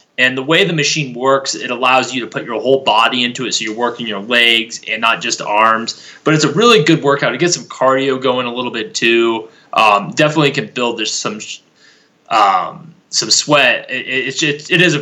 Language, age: English, 20-39